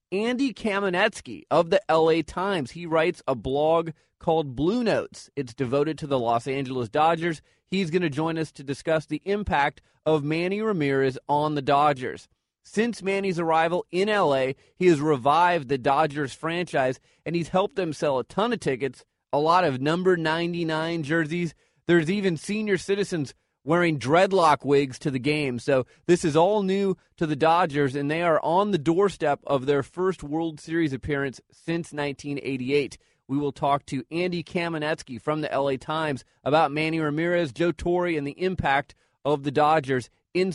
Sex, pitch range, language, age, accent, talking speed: male, 140-175 Hz, English, 30-49, American, 170 wpm